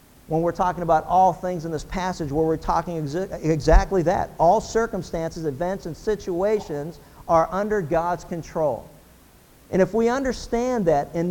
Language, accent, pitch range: English, American, 170-225 Hz